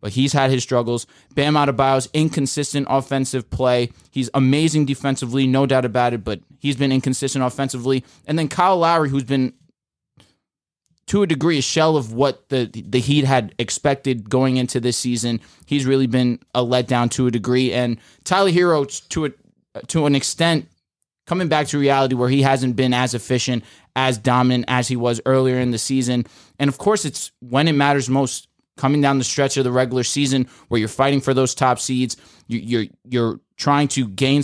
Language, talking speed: English, 190 wpm